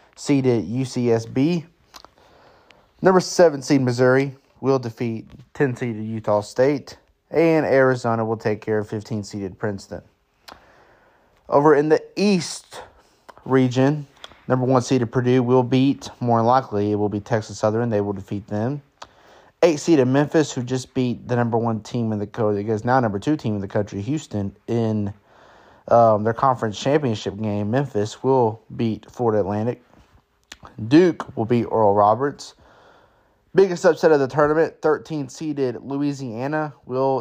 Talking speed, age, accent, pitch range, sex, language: 145 wpm, 30-49, American, 110-135 Hz, male, English